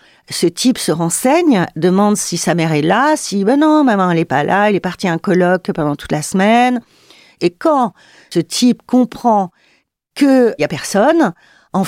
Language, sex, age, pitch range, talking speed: French, female, 50-69, 180-240 Hz, 205 wpm